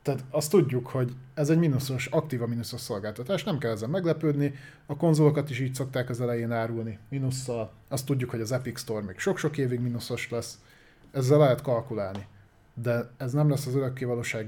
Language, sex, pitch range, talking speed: Hungarian, male, 115-150 Hz, 180 wpm